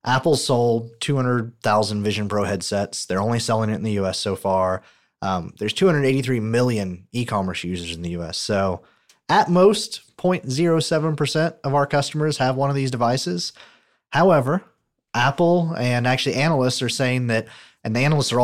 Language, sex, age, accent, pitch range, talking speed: English, male, 30-49, American, 105-130 Hz, 155 wpm